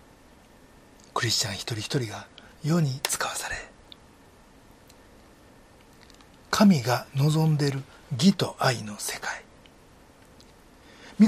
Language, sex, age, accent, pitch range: Japanese, male, 60-79, native, 130-200 Hz